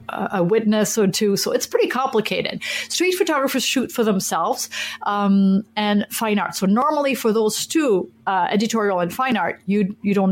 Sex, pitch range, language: female, 205-275 Hz, English